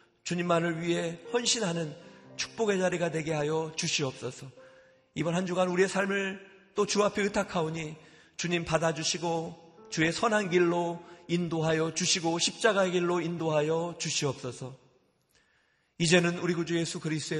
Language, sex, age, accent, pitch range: Korean, male, 40-59, native, 155-195 Hz